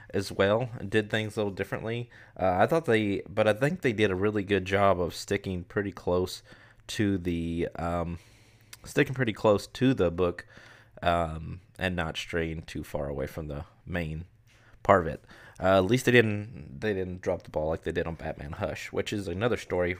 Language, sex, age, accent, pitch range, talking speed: English, male, 20-39, American, 95-125 Hz, 200 wpm